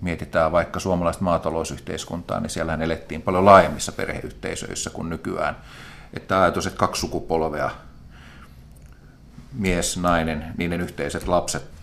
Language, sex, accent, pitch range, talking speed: Finnish, male, native, 80-95 Hz, 110 wpm